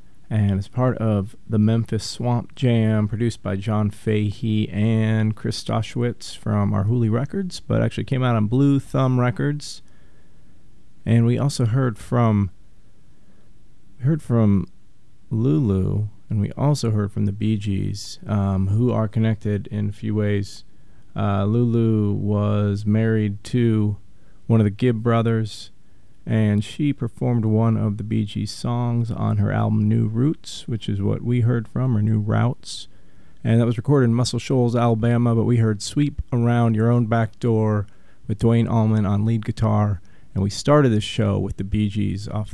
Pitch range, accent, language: 105-120 Hz, American, English